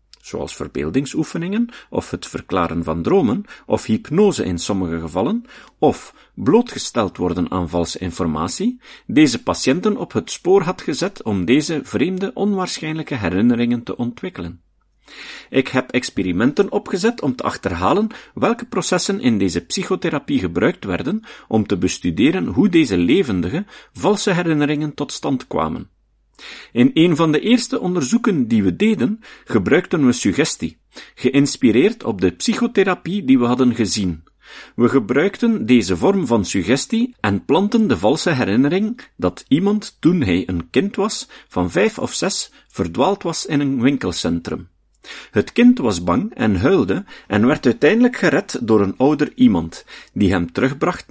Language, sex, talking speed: Dutch, male, 140 wpm